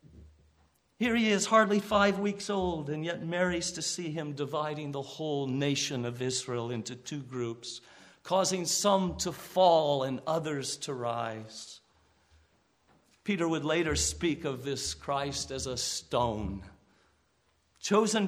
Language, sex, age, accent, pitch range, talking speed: English, male, 50-69, American, 115-175 Hz, 135 wpm